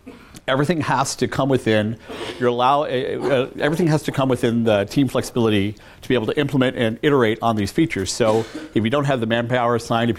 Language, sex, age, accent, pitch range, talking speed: English, male, 40-59, American, 105-125 Hz, 210 wpm